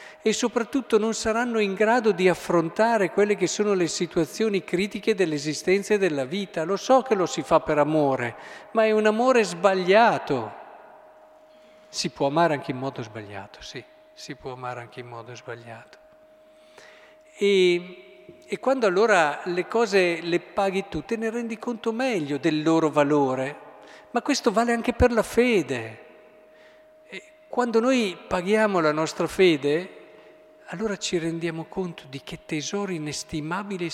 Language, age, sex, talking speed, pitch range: Italian, 50-69, male, 150 wpm, 155-215 Hz